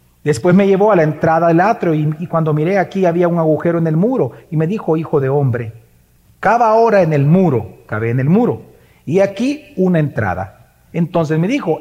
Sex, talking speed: male, 210 wpm